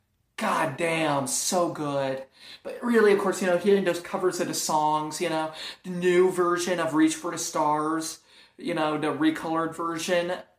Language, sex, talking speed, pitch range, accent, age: English, male, 175 wpm, 150-180 Hz, American, 30-49